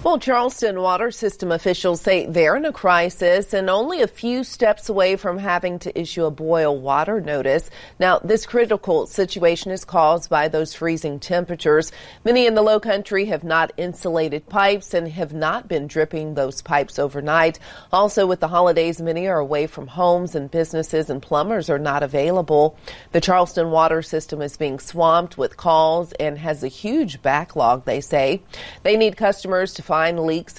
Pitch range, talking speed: 150-180 Hz, 175 wpm